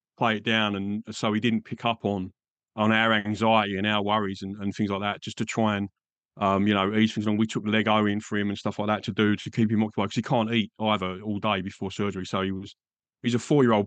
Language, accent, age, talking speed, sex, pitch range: English, British, 30-49, 265 wpm, male, 100-115 Hz